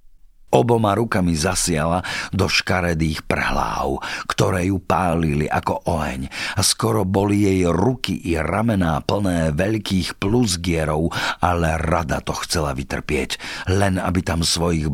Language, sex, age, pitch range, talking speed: Slovak, male, 50-69, 80-95 Hz, 120 wpm